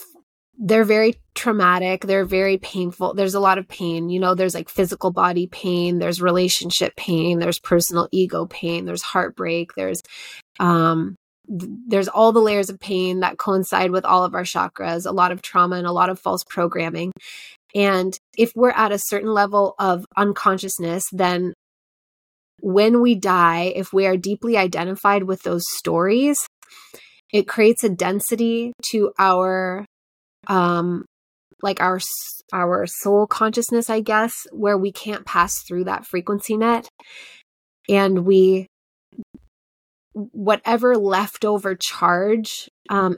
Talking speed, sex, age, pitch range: 140 wpm, female, 20-39, 180-210 Hz